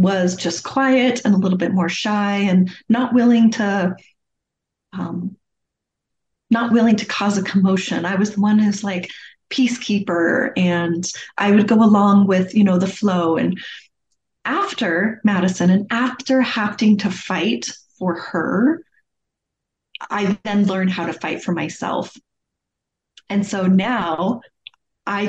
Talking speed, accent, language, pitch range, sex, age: 140 wpm, American, English, 180-220 Hz, female, 30-49